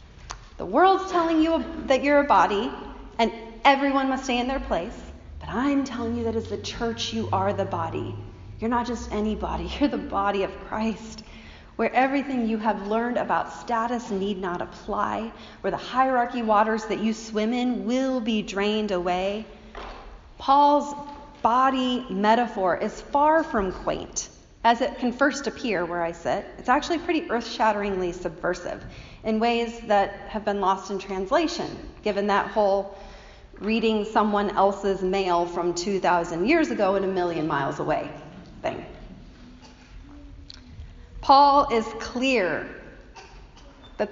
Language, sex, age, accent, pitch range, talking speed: English, female, 30-49, American, 195-250 Hz, 145 wpm